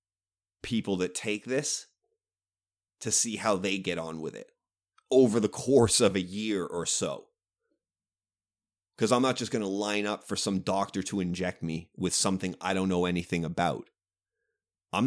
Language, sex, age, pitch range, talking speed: English, male, 30-49, 90-120 Hz, 165 wpm